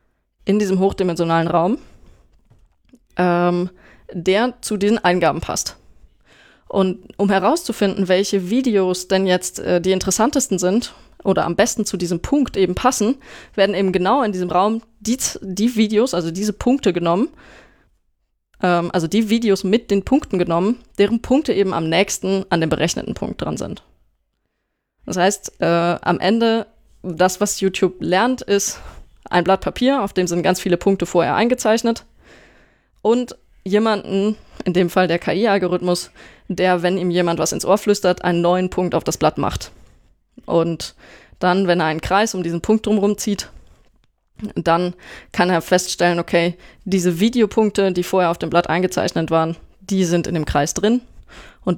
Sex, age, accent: female, 20-39, German